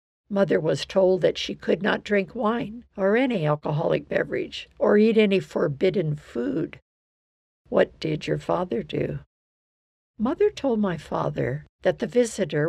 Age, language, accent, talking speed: 60-79, English, American, 140 wpm